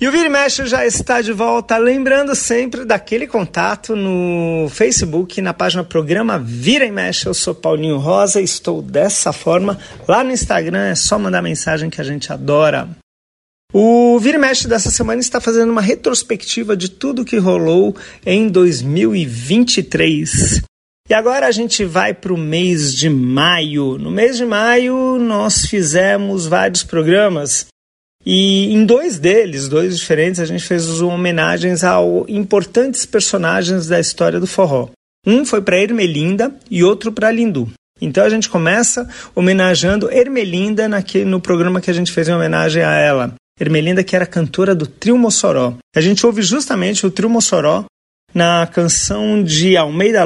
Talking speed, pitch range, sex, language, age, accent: 160 wpm, 165-225 Hz, male, Portuguese, 40-59, Brazilian